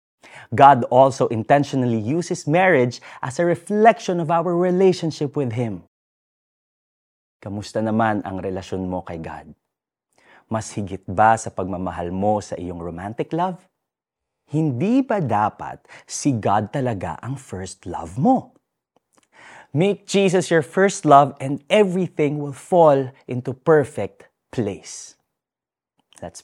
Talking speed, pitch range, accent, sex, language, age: 120 wpm, 105-170 Hz, native, male, Filipino, 30-49